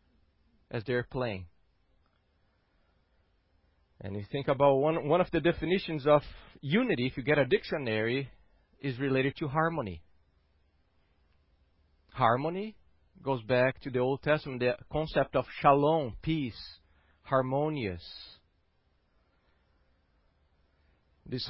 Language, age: English, 40-59